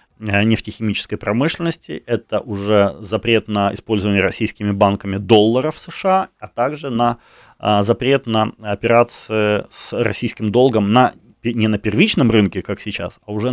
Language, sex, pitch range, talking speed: Ukrainian, male, 100-135 Hz, 125 wpm